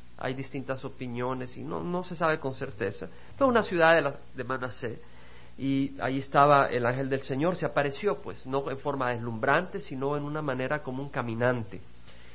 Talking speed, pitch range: 185 wpm, 115-150 Hz